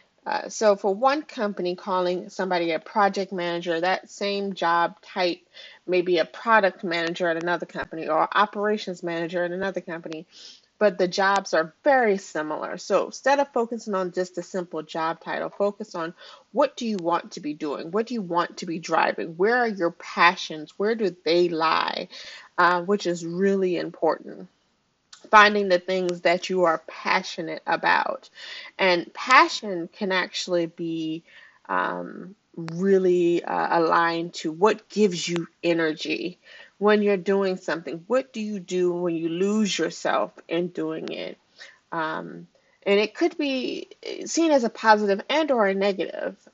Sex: female